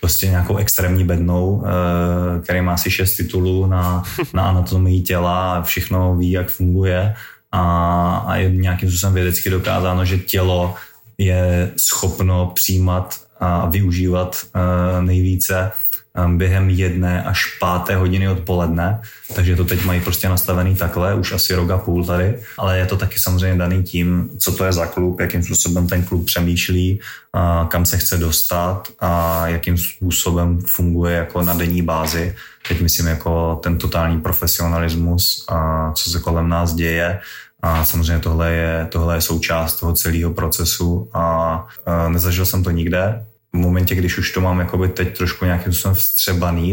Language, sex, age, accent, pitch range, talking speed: Czech, male, 20-39, native, 85-95 Hz, 155 wpm